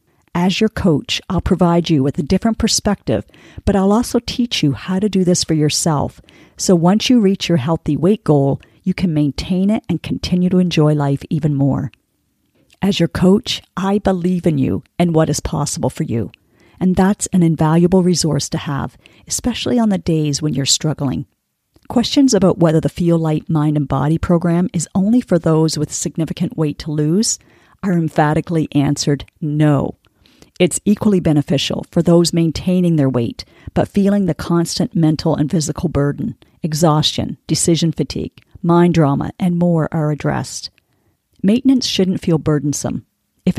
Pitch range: 150-185 Hz